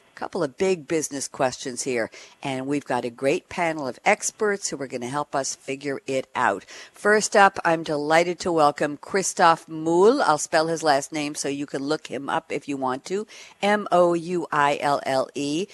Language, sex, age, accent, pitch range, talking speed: English, female, 50-69, American, 140-185 Hz, 180 wpm